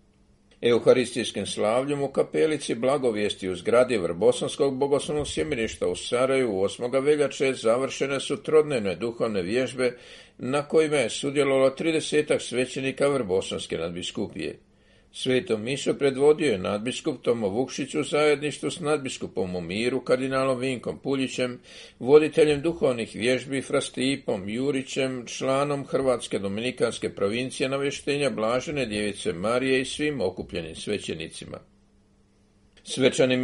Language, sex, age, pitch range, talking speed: Croatian, male, 50-69, 125-145 Hz, 110 wpm